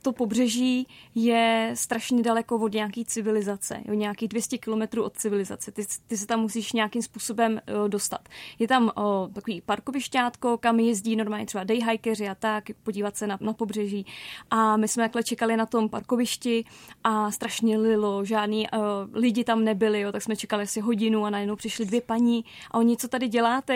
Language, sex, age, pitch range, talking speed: Czech, female, 20-39, 215-240 Hz, 180 wpm